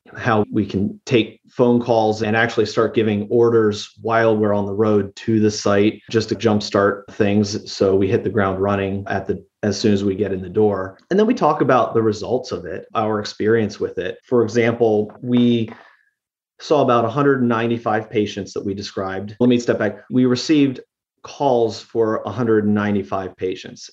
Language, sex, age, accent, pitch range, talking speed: English, male, 30-49, American, 100-120 Hz, 180 wpm